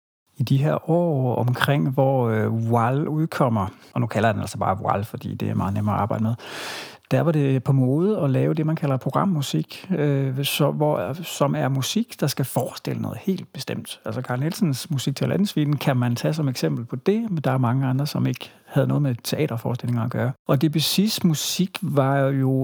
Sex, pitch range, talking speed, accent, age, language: male, 125-155 Hz, 205 wpm, native, 60-79, Danish